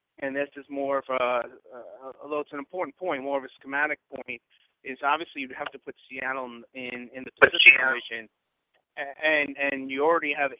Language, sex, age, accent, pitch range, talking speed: English, male, 30-49, American, 125-140 Hz, 185 wpm